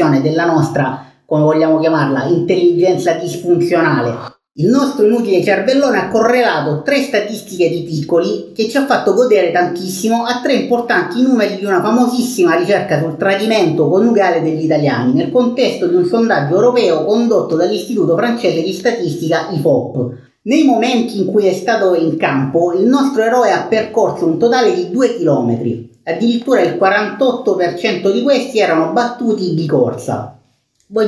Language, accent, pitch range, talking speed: Italian, native, 150-235 Hz, 145 wpm